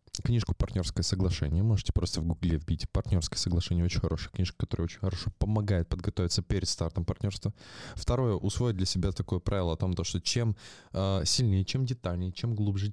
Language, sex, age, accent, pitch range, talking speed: Russian, male, 20-39, native, 85-110 Hz, 170 wpm